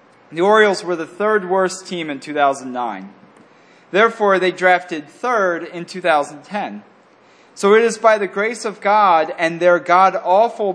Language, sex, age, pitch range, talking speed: English, male, 30-49, 150-200 Hz, 145 wpm